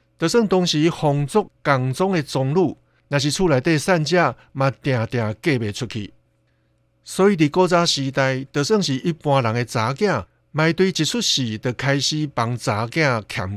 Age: 60-79